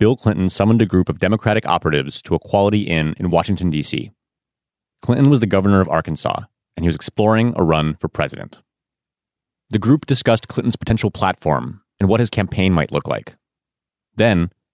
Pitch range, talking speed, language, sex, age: 85-115 Hz, 175 wpm, English, male, 30-49